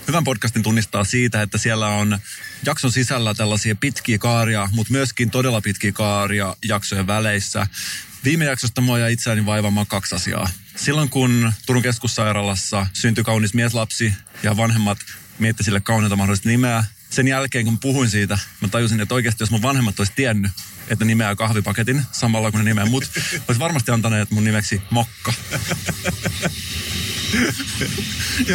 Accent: native